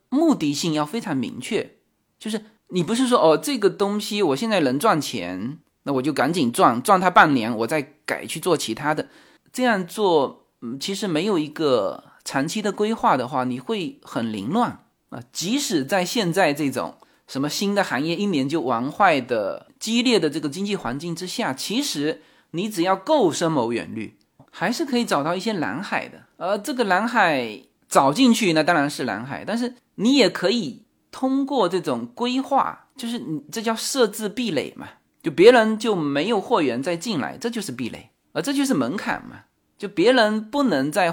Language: Chinese